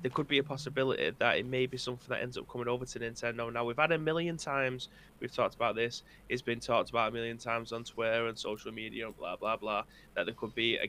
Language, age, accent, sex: English, 20-39, British, male